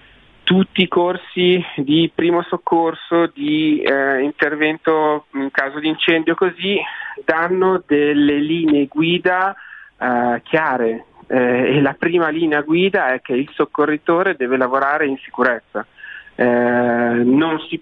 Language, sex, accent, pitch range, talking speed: Italian, male, native, 125-165 Hz, 125 wpm